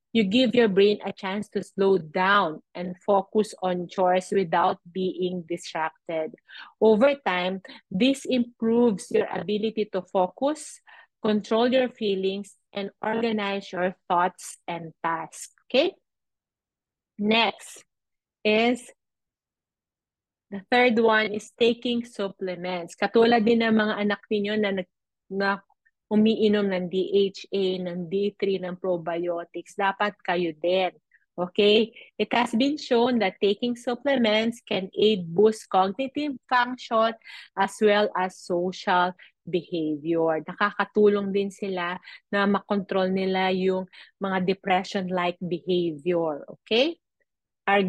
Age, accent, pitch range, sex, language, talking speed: 30-49, native, 185-230 Hz, female, Filipino, 115 wpm